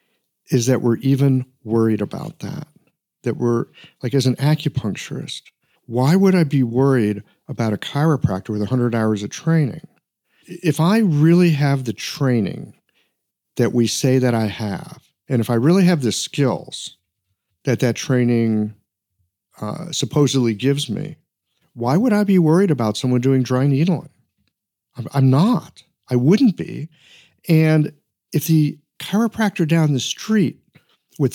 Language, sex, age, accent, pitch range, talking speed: English, male, 50-69, American, 120-165 Hz, 145 wpm